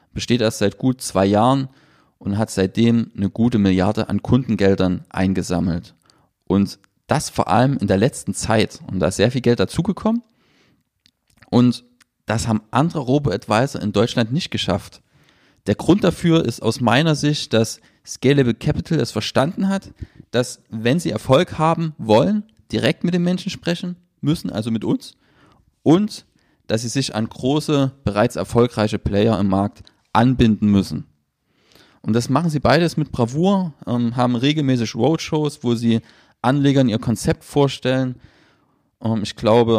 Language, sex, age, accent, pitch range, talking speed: German, male, 30-49, German, 105-140 Hz, 150 wpm